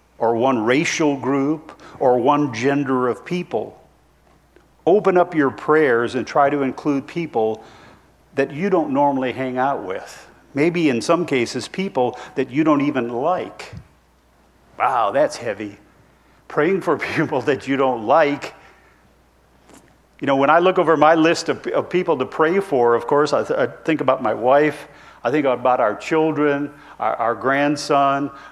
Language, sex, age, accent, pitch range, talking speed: English, male, 50-69, American, 120-155 Hz, 155 wpm